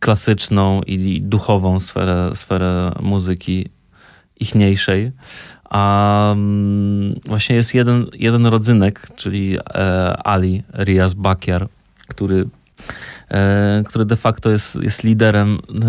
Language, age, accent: Polish, 30-49, native